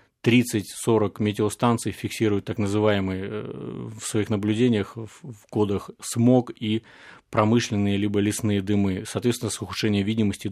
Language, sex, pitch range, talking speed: Russian, male, 105-115 Hz, 115 wpm